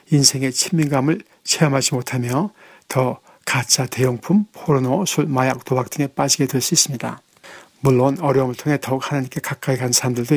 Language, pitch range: Korean, 130-150 Hz